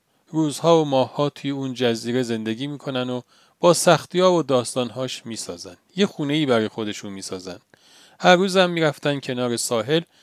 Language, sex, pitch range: Persian, male, 115-160 Hz